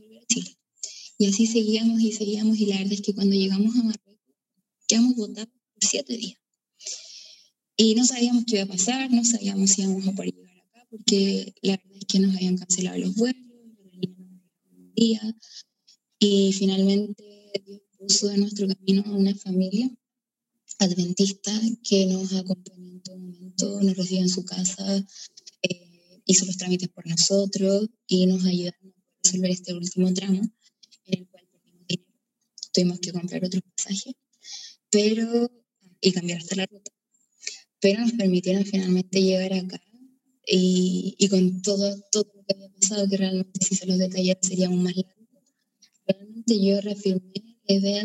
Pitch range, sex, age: 185-220 Hz, female, 20-39